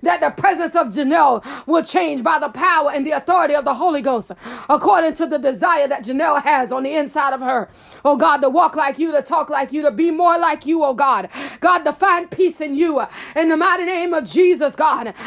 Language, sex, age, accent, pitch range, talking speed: English, female, 30-49, American, 285-335 Hz, 230 wpm